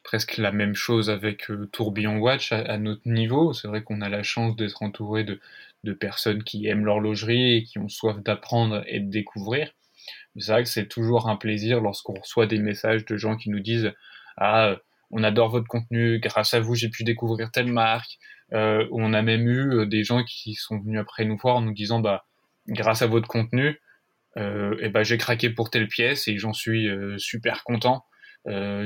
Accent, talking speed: French, 210 wpm